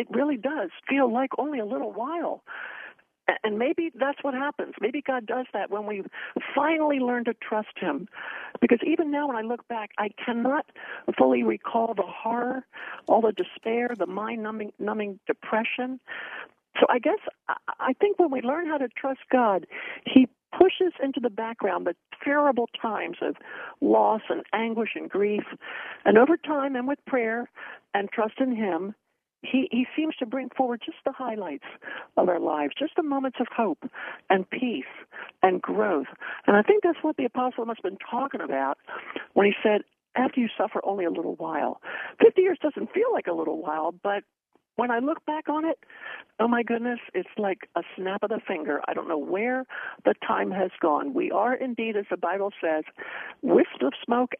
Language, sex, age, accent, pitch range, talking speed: English, male, 60-79, American, 210-280 Hz, 185 wpm